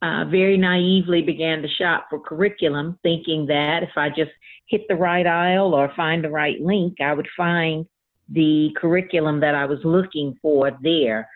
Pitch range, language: 145-170 Hz, English